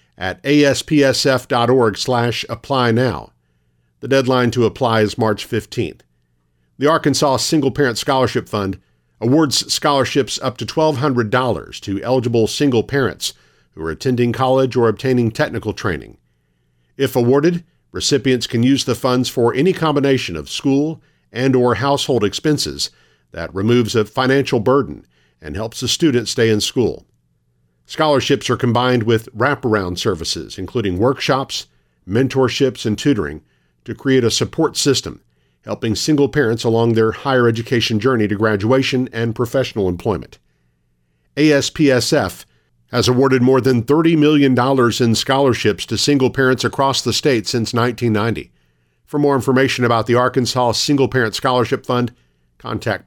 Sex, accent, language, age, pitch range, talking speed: male, American, English, 50-69, 105-135 Hz, 135 wpm